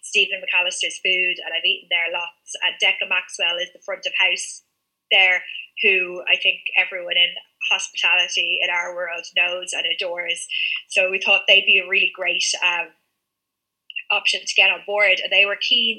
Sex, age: female, 20-39